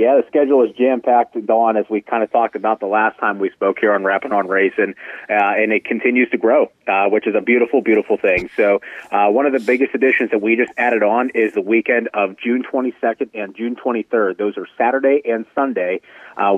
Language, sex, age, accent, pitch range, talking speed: English, male, 30-49, American, 105-125 Hz, 230 wpm